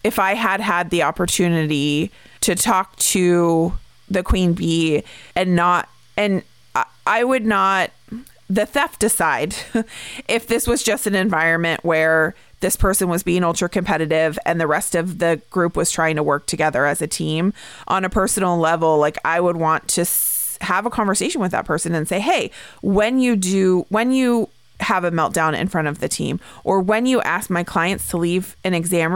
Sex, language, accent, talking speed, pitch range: female, English, American, 185 wpm, 165-200 Hz